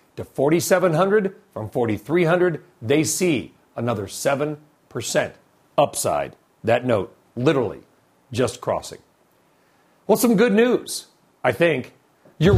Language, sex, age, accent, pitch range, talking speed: English, male, 50-69, American, 140-195 Hz, 100 wpm